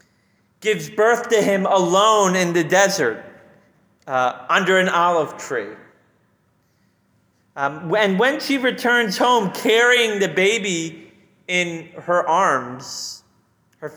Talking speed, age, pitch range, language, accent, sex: 110 wpm, 30-49, 170-225 Hz, English, American, male